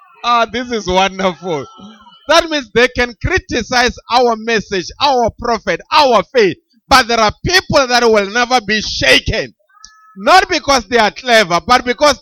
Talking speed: 155 wpm